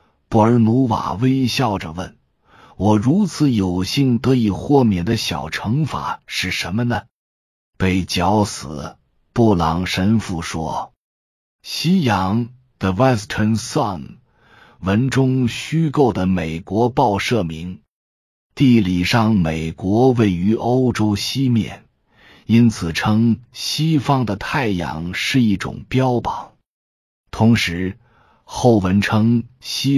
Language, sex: Chinese, male